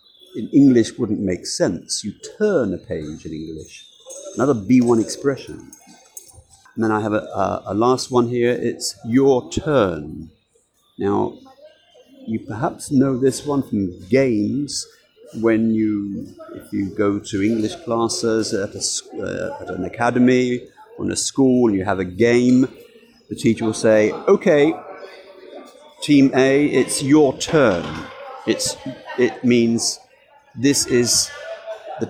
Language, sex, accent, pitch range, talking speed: English, male, British, 110-150 Hz, 140 wpm